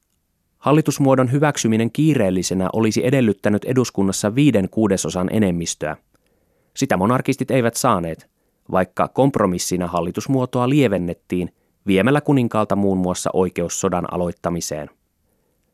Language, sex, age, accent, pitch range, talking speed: Finnish, male, 30-49, native, 90-130 Hz, 90 wpm